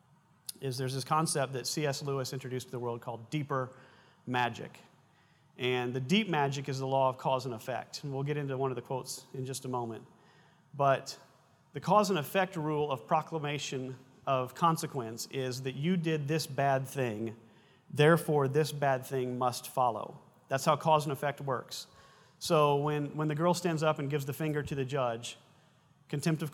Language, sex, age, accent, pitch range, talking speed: English, male, 40-59, American, 130-155 Hz, 185 wpm